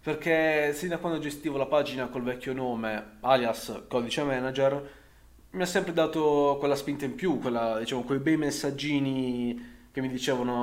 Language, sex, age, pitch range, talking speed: Italian, male, 20-39, 125-155 Hz, 160 wpm